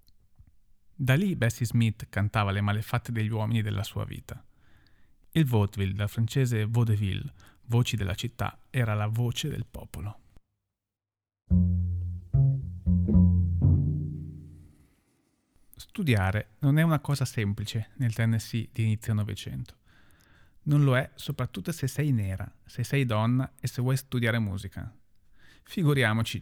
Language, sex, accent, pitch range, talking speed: Italian, male, native, 100-130 Hz, 120 wpm